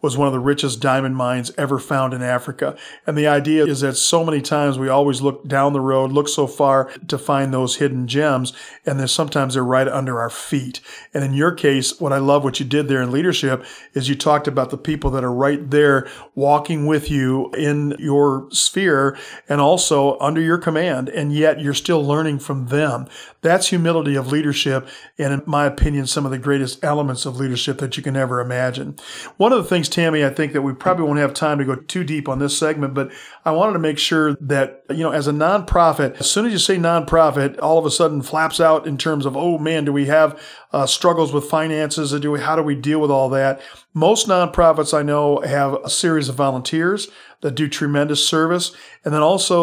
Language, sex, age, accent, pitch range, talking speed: English, male, 40-59, American, 135-160 Hz, 220 wpm